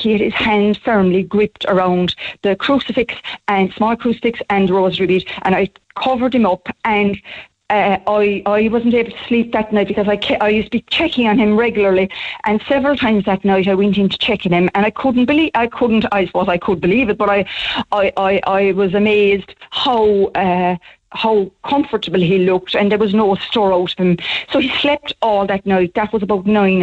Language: English